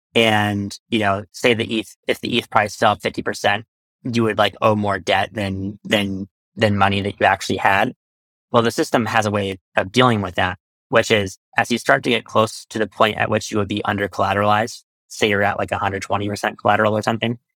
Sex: male